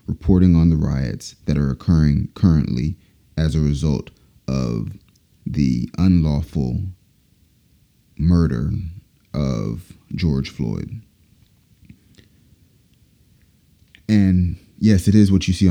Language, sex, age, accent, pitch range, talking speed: English, male, 30-49, American, 75-95 Hz, 95 wpm